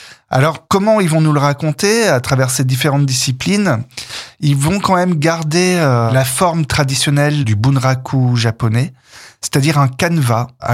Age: 20-39